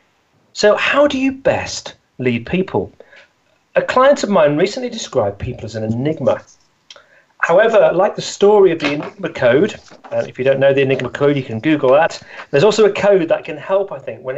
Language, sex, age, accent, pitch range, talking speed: English, male, 40-59, British, 130-185 Hz, 200 wpm